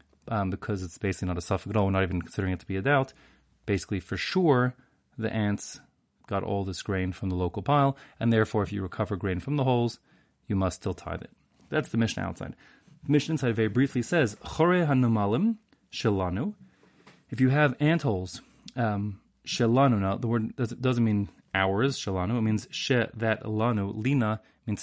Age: 30-49